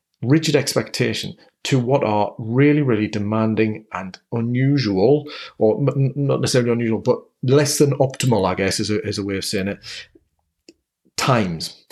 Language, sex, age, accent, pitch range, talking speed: English, male, 40-59, British, 110-140 Hz, 150 wpm